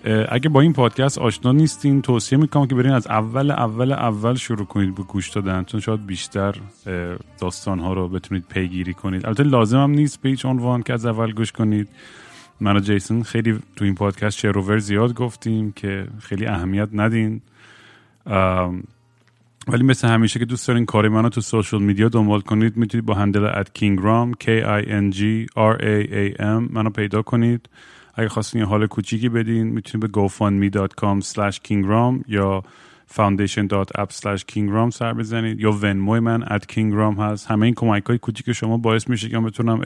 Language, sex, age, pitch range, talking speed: Persian, male, 30-49, 100-120 Hz, 160 wpm